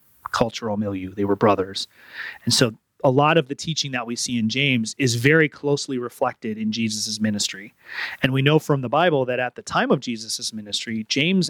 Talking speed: 200 wpm